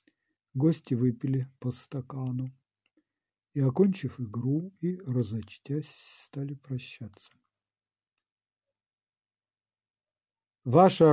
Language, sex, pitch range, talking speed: Ukrainian, male, 115-150 Hz, 65 wpm